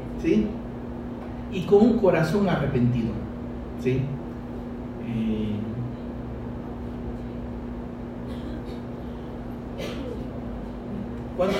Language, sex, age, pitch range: Spanish, male, 40-59, 120-195 Hz